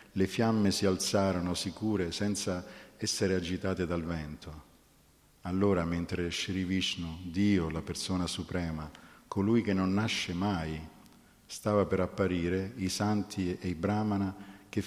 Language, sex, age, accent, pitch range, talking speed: Italian, male, 50-69, native, 85-100 Hz, 130 wpm